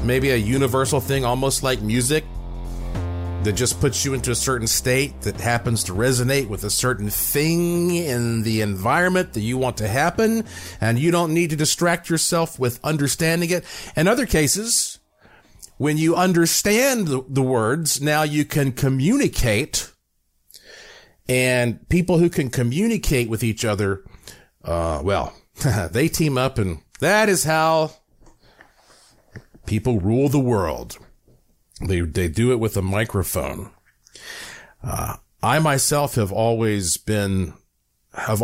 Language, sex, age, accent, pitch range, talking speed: English, male, 40-59, American, 105-155 Hz, 140 wpm